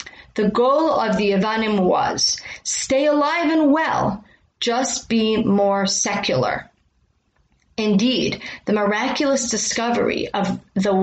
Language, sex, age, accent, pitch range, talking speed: English, female, 30-49, American, 200-250 Hz, 110 wpm